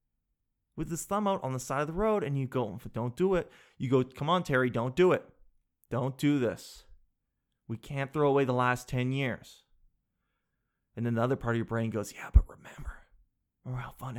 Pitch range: 125-180 Hz